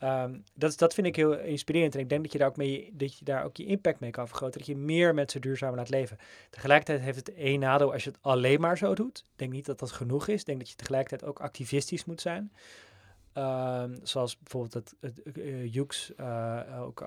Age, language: 20-39, Dutch